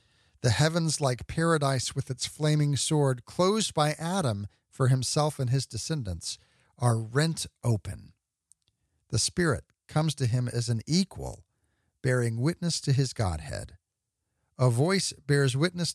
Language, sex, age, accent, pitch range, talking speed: English, male, 50-69, American, 105-155 Hz, 135 wpm